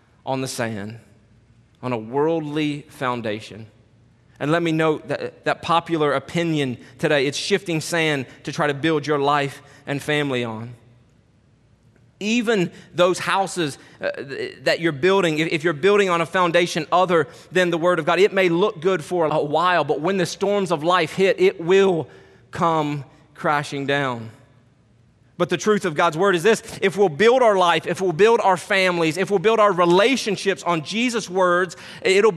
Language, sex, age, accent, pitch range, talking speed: English, male, 30-49, American, 130-185 Hz, 170 wpm